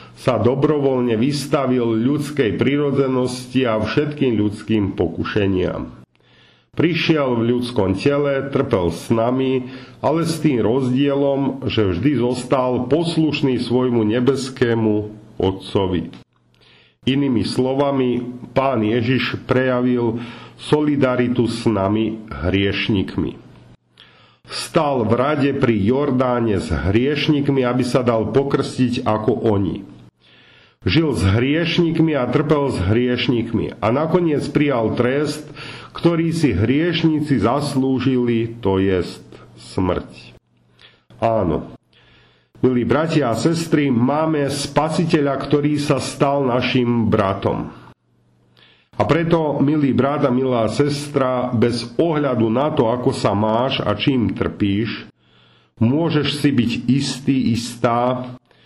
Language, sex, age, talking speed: Slovak, male, 50-69, 100 wpm